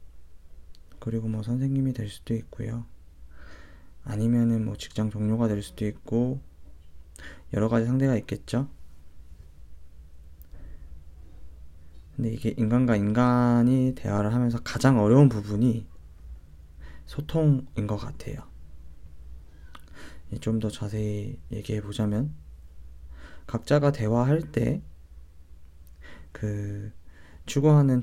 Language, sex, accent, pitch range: Korean, male, native, 75-115 Hz